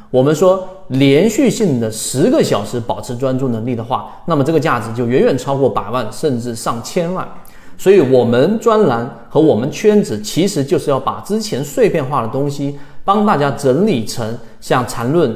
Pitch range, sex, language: 120-160 Hz, male, Chinese